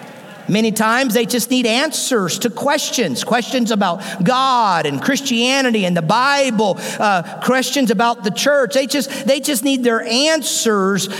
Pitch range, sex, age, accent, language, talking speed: 220-275 Hz, male, 50-69, American, English, 150 wpm